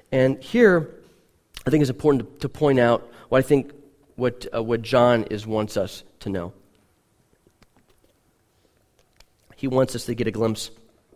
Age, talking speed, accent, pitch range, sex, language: 30-49, 155 wpm, American, 110-140 Hz, male, English